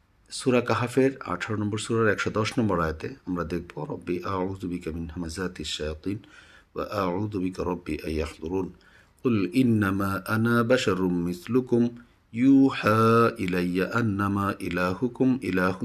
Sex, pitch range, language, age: male, 90-115 Hz, Bengali, 50-69